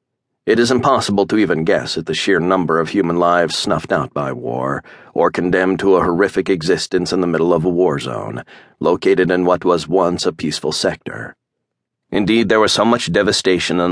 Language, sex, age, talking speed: English, male, 40-59, 195 wpm